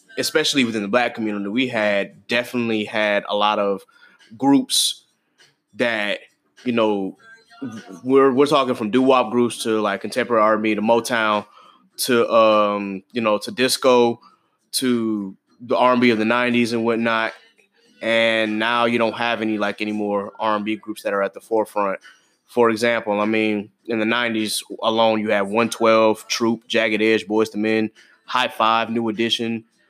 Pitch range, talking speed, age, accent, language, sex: 110-135 Hz, 160 wpm, 20-39, American, English, male